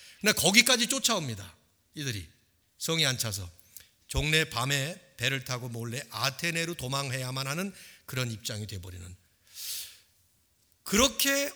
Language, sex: Korean, male